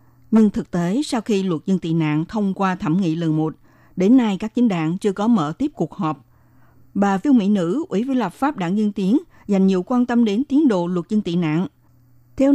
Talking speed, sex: 235 wpm, female